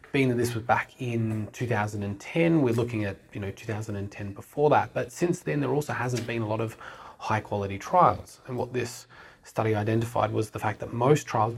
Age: 30-49